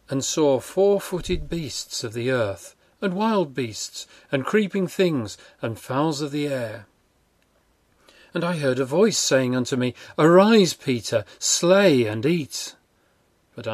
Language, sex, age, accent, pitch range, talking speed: English, male, 40-59, British, 120-155 Hz, 140 wpm